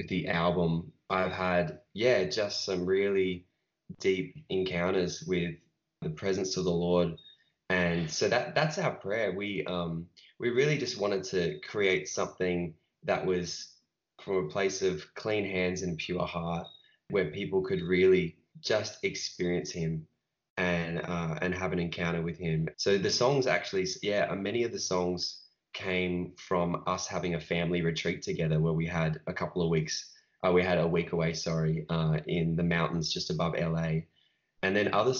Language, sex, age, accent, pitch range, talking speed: English, male, 20-39, Australian, 80-90 Hz, 165 wpm